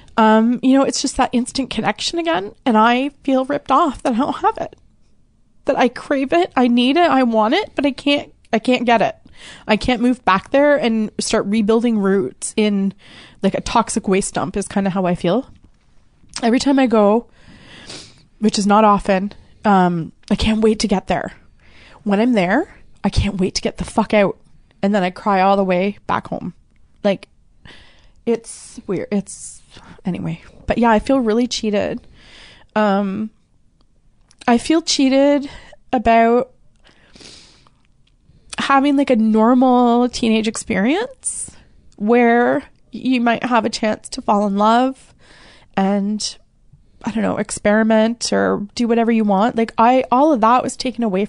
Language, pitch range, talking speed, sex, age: English, 210-260 Hz, 165 wpm, female, 20-39